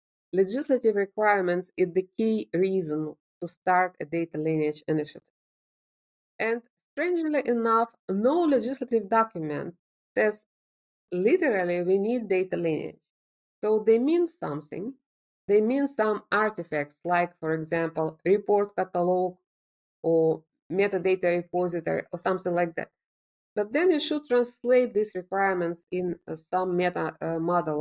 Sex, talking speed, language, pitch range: female, 120 wpm, English, 175-230 Hz